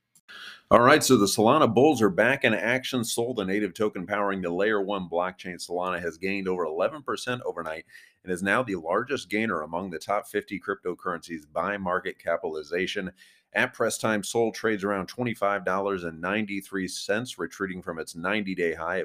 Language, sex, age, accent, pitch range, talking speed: English, male, 30-49, American, 85-100 Hz, 160 wpm